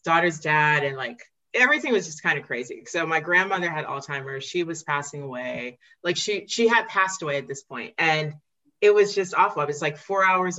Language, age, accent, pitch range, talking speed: English, 30-49, American, 150-180 Hz, 215 wpm